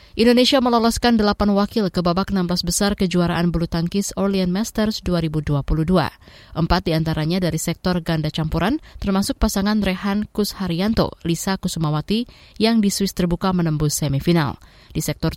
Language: Indonesian